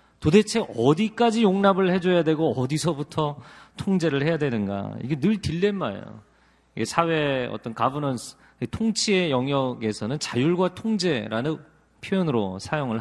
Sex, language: male, Korean